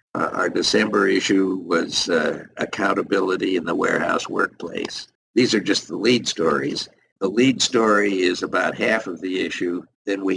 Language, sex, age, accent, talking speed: English, male, 60-79, American, 155 wpm